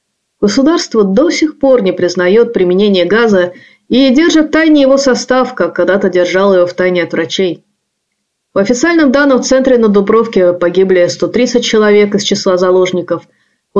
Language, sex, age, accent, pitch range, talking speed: Russian, female, 30-49, native, 185-255 Hz, 150 wpm